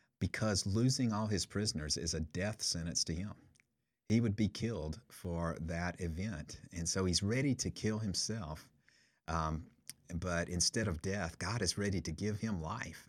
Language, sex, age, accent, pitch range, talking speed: English, male, 50-69, American, 85-110 Hz, 170 wpm